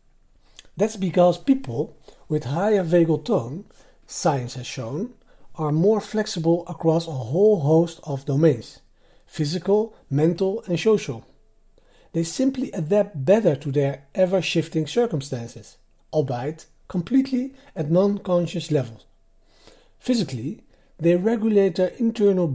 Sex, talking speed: male, 110 wpm